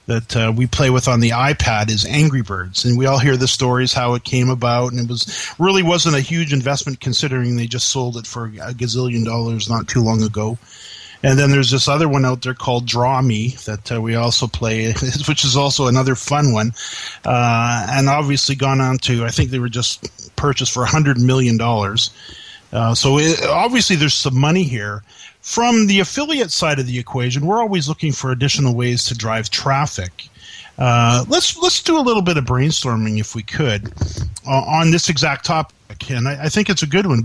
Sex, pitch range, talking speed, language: male, 120-155 Hz, 205 wpm, English